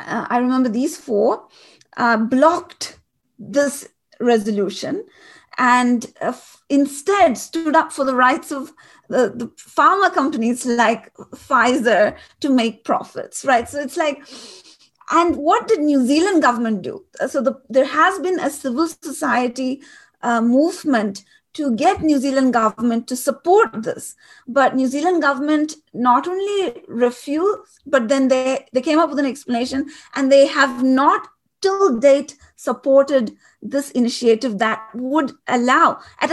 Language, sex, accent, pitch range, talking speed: English, female, Indian, 245-320 Hz, 135 wpm